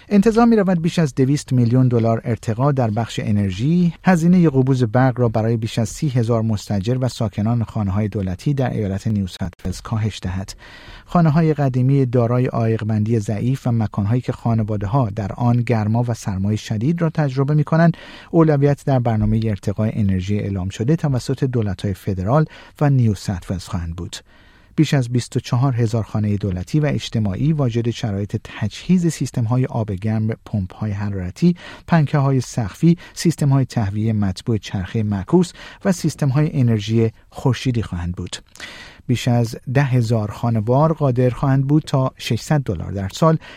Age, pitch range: 50-69, 105-140 Hz